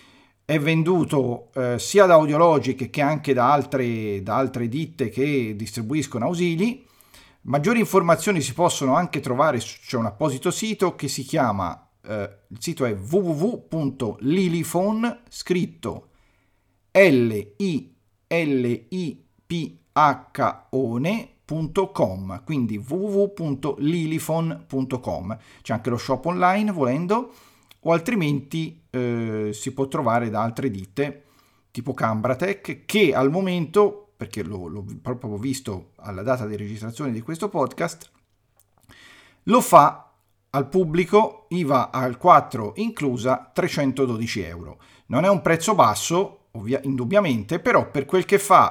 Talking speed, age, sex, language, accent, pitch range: 120 wpm, 40-59, male, Italian, native, 115-170 Hz